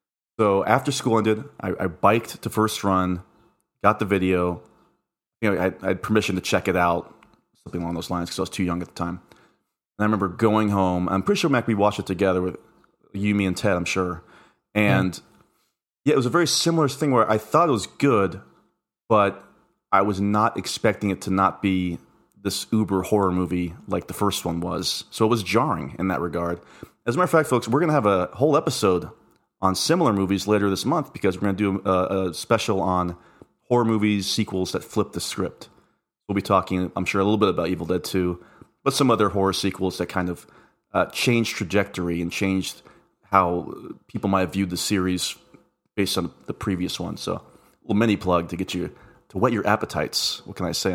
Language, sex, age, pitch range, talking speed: English, male, 30-49, 90-110 Hz, 215 wpm